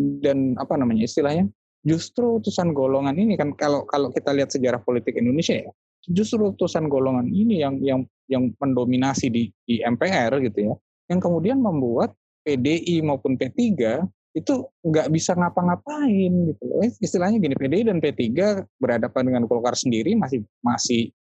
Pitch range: 125-180 Hz